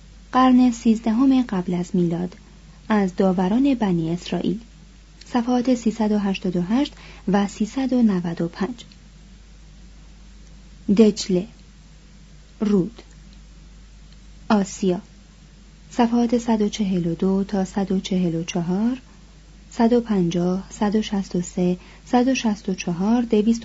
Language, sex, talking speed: Persian, female, 120 wpm